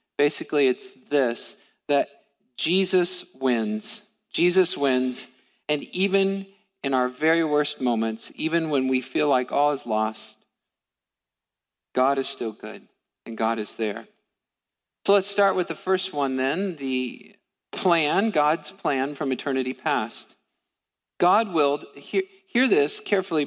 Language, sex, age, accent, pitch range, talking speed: English, male, 50-69, American, 140-195 Hz, 135 wpm